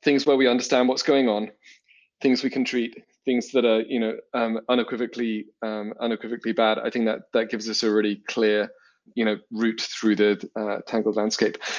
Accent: British